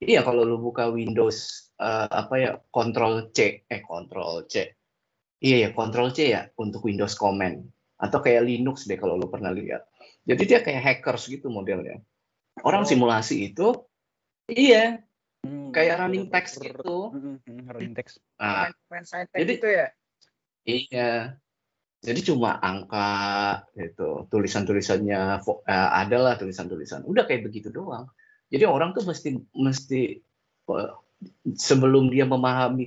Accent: native